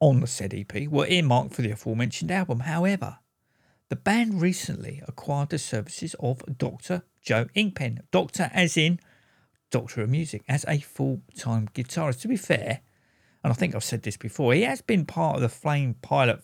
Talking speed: 180 wpm